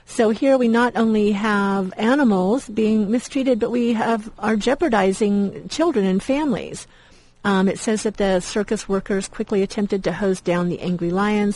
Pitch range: 180-215 Hz